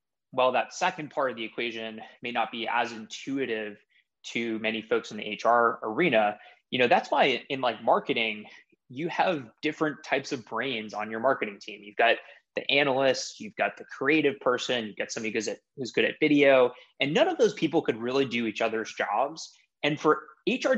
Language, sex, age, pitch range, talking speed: English, male, 20-39, 110-145 Hz, 195 wpm